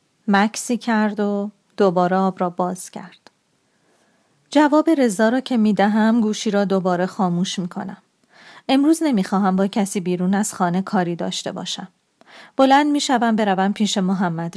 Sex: female